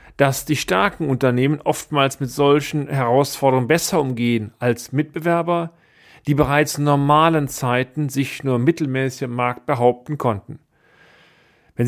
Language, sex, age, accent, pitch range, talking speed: German, male, 40-59, German, 130-155 Hz, 125 wpm